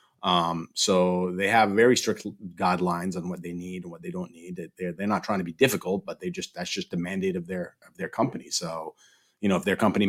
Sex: male